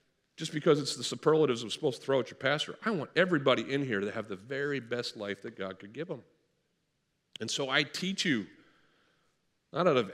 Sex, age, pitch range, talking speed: male, 50-69, 120-165 Hz, 215 wpm